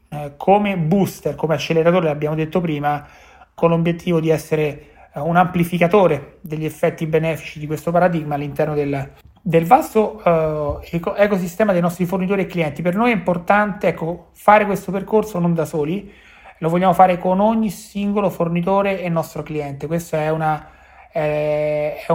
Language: Italian